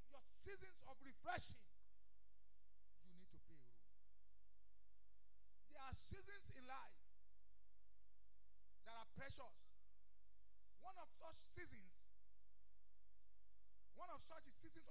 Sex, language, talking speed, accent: male, English, 100 wpm, Nigerian